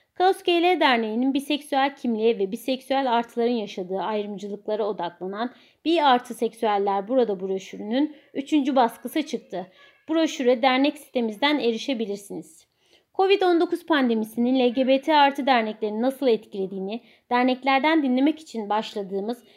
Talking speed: 100 wpm